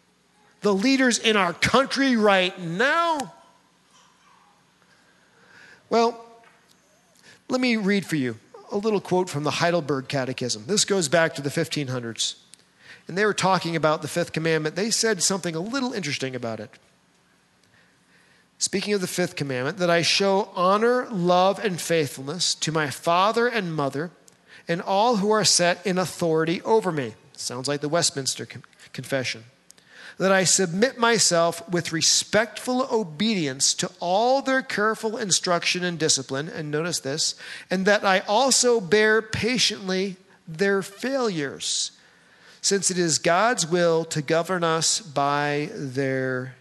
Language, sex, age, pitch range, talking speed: English, male, 40-59, 155-210 Hz, 140 wpm